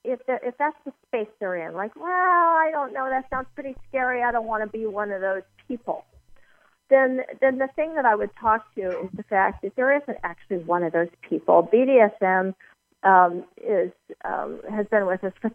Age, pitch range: 40-59, 175-230 Hz